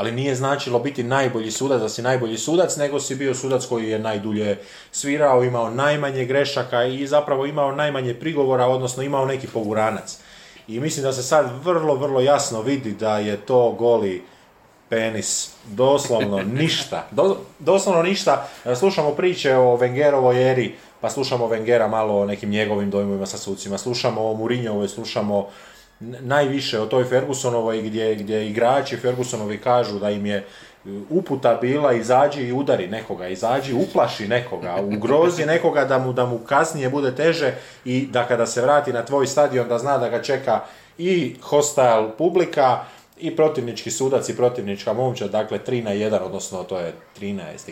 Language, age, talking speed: Croatian, 20-39, 160 wpm